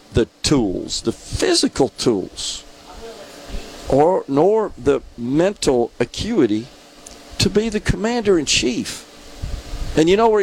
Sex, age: male, 50-69